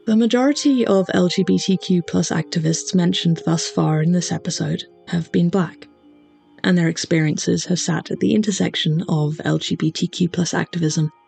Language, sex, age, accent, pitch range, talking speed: English, female, 20-39, British, 160-210 Hz, 135 wpm